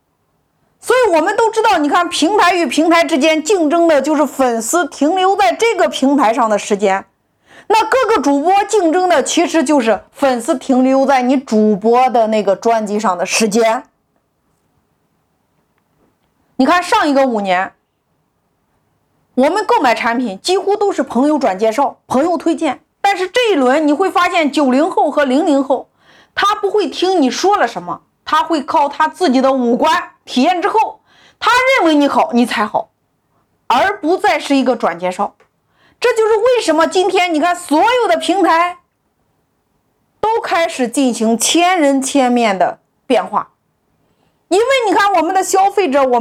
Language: Chinese